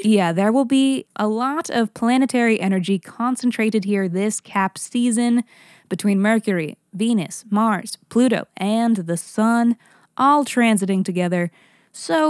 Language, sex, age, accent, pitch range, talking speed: English, female, 20-39, American, 185-235 Hz, 125 wpm